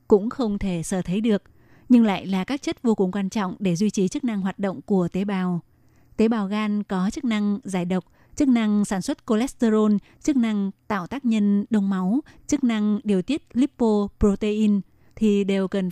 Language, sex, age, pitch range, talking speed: Vietnamese, female, 20-39, 190-220 Hz, 200 wpm